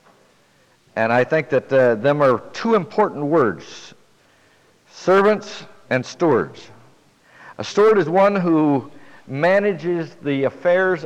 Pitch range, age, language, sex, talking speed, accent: 135-175 Hz, 60-79, English, male, 115 wpm, American